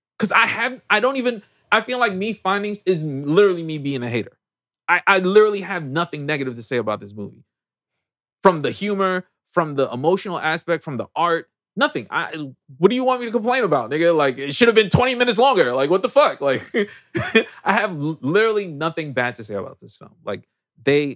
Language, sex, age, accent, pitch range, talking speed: English, male, 20-39, American, 125-185 Hz, 210 wpm